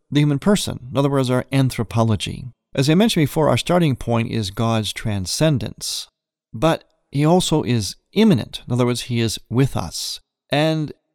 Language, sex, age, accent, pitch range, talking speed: English, male, 40-59, American, 110-150 Hz, 165 wpm